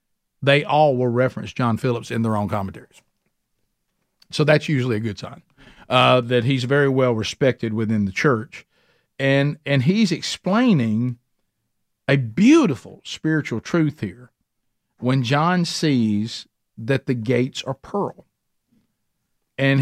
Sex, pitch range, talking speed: male, 110-140 Hz, 130 wpm